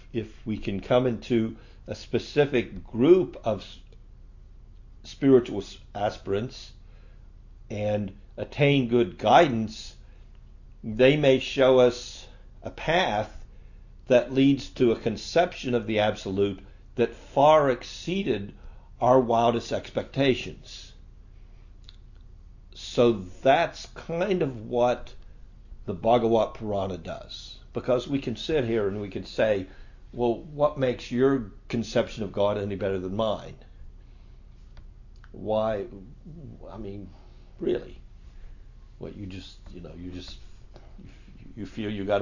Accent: American